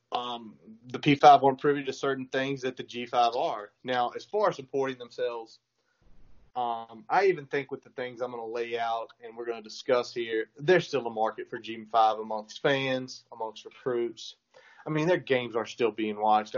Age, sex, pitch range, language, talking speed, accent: 30-49, male, 115-140 Hz, English, 195 wpm, American